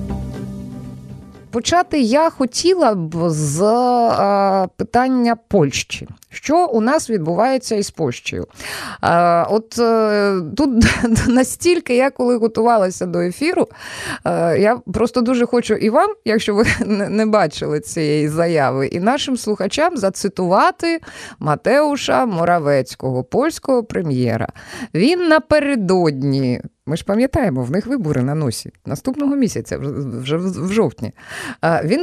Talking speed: 105 wpm